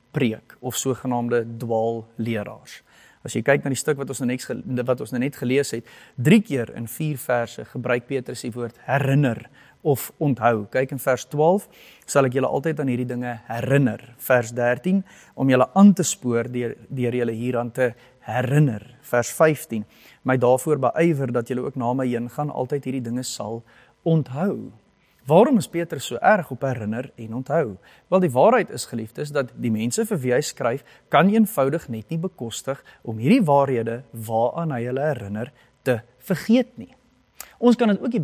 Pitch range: 120-170 Hz